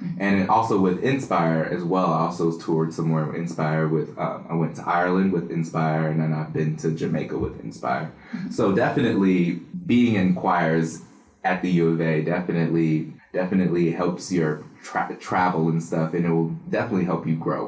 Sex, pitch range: male, 80-100 Hz